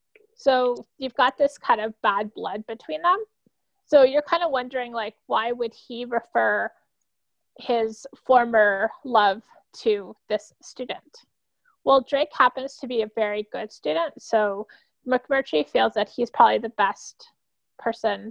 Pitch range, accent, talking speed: 215-270 Hz, American, 145 wpm